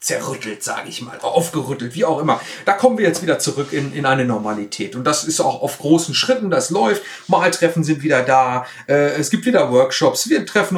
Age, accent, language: 40-59, German, German